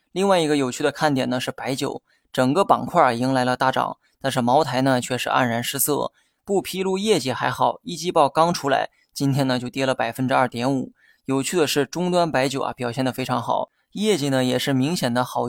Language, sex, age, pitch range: Chinese, male, 20-39, 130-150 Hz